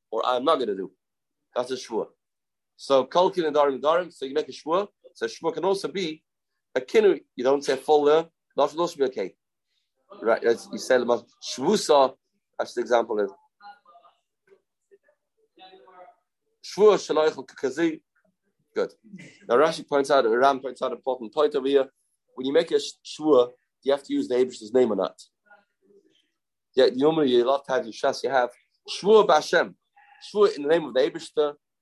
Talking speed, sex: 175 wpm, male